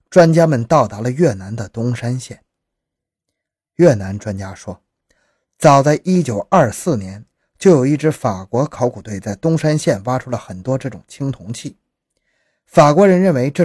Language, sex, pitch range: Chinese, male, 105-160 Hz